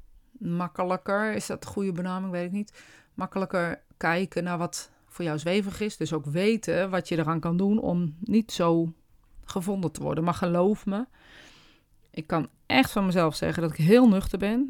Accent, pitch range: Dutch, 170-205 Hz